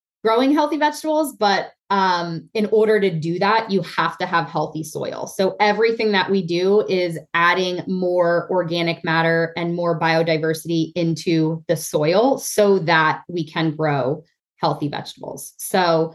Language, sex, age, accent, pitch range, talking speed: English, female, 20-39, American, 170-210 Hz, 150 wpm